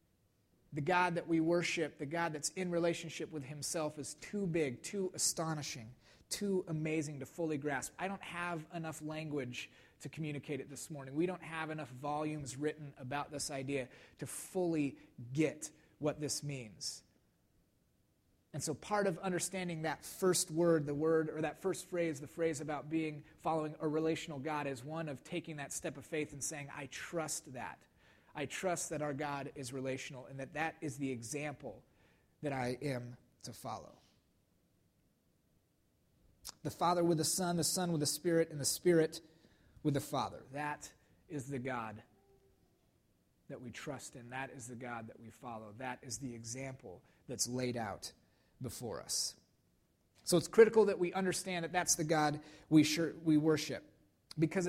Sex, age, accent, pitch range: male, 30-49, American, 135-165 Hz